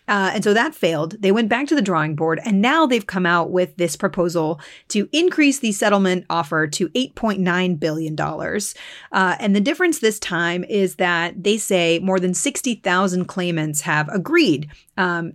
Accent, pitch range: American, 175-220 Hz